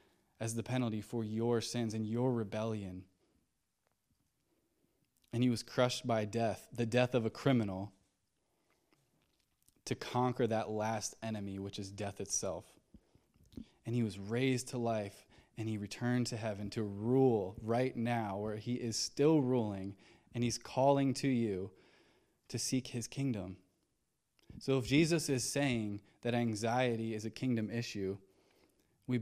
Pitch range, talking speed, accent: 105-125 Hz, 145 wpm, American